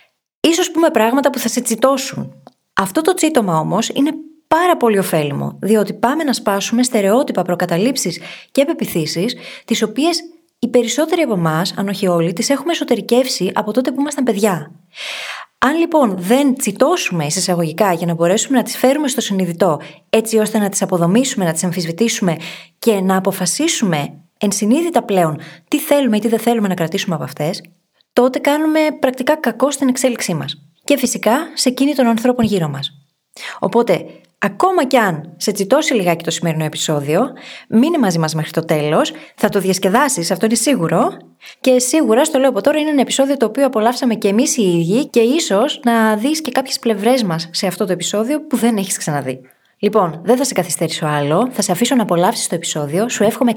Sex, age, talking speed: female, 20-39, 180 wpm